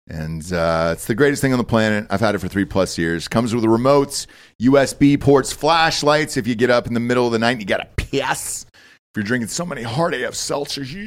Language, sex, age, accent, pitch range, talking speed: English, male, 40-59, American, 100-140 Hz, 250 wpm